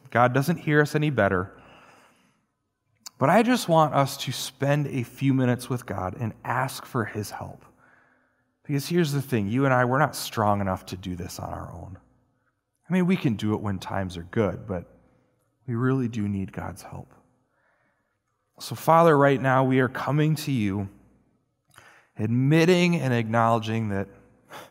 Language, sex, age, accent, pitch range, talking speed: English, male, 30-49, American, 105-135 Hz, 170 wpm